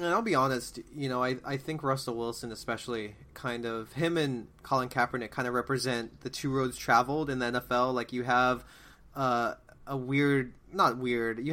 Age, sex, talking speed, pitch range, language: 20-39, male, 195 wpm, 120-140 Hz, English